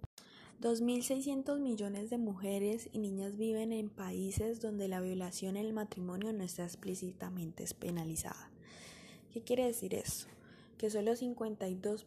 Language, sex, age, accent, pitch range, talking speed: Spanish, female, 10-29, Colombian, 185-215 Hz, 125 wpm